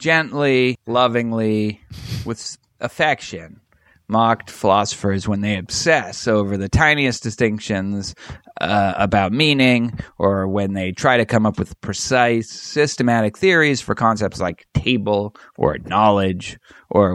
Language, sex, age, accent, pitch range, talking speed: English, male, 30-49, American, 100-135 Hz, 120 wpm